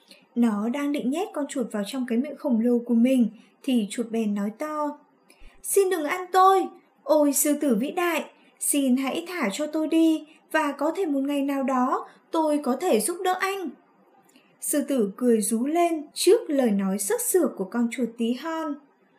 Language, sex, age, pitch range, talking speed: Vietnamese, female, 10-29, 230-295 Hz, 195 wpm